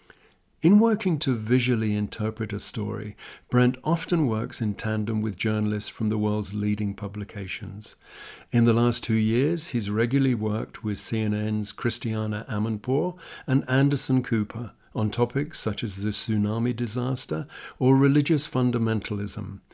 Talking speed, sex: 135 wpm, male